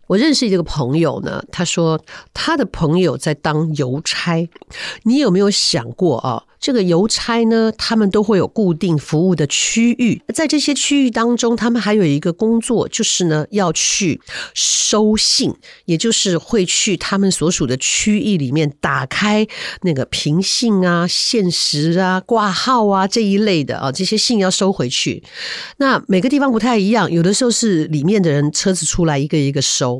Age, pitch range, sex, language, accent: 50-69, 155-215 Hz, female, Chinese, American